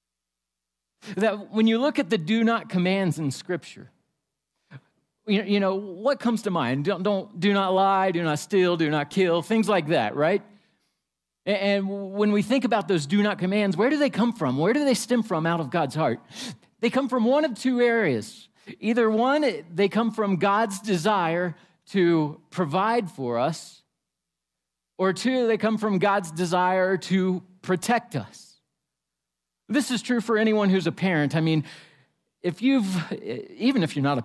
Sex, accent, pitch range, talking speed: male, American, 175-225 Hz, 170 wpm